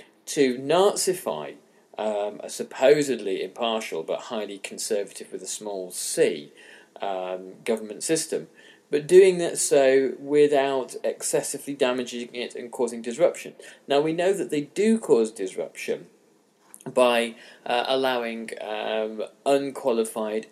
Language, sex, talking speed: English, male, 115 wpm